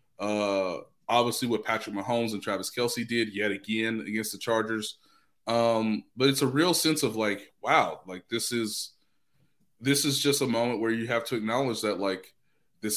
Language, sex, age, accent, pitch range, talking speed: English, male, 20-39, American, 100-120 Hz, 180 wpm